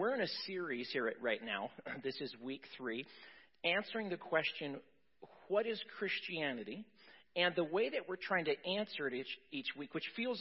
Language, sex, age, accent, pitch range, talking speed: English, male, 40-59, American, 145-195 Hz, 185 wpm